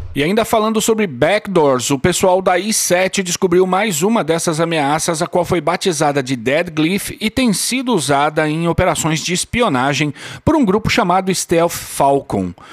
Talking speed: 165 wpm